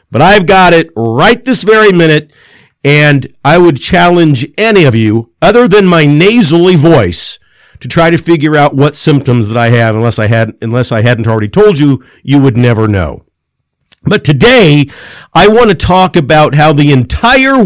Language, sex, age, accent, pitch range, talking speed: English, male, 50-69, American, 130-185 Hz, 180 wpm